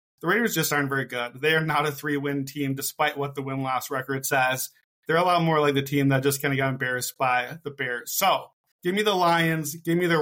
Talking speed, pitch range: 245 wpm, 145-180 Hz